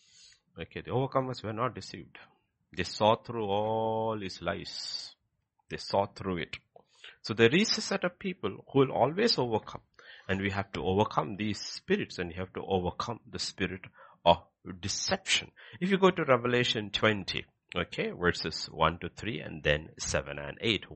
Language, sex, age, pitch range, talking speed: English, male, 60-79, 105-160 Hz, 170 wpm